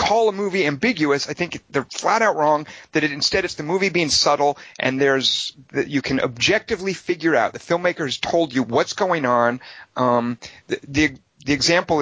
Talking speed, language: 195 wpm, English